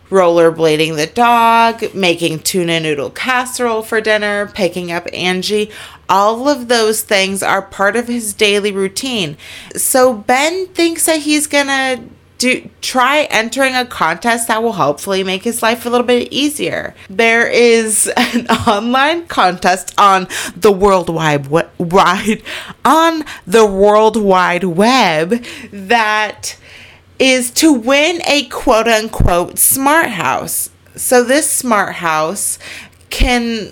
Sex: female